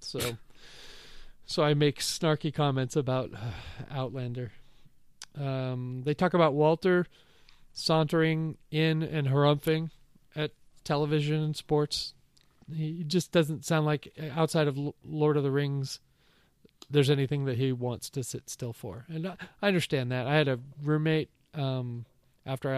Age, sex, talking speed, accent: 40-59, male, 135 wpm, American